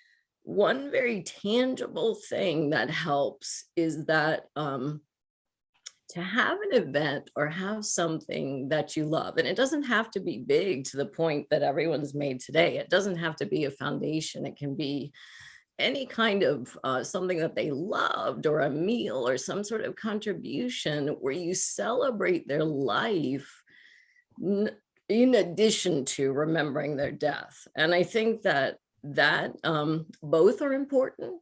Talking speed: 150 wpm